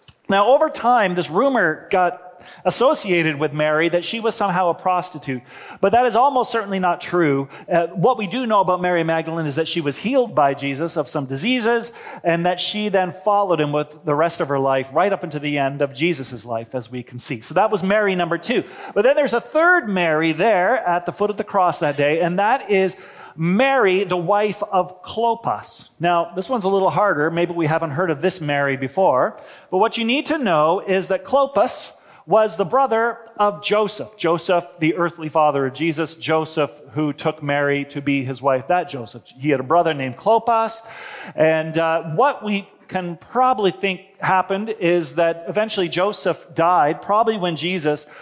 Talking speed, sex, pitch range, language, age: 200 wpm, male, 155-205 Hz, English, 40-59